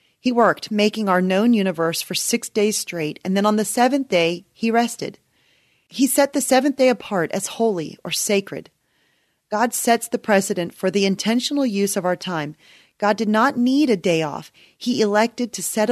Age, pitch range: 30-49, 180-225 Hz